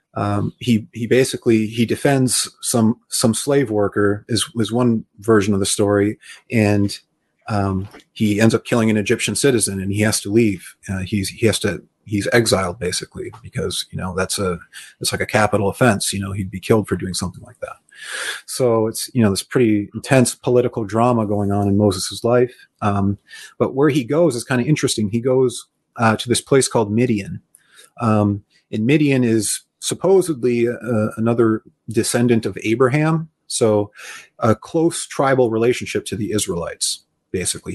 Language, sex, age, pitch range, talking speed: English, male, 30-49, 100-125 Hz, 175 wpm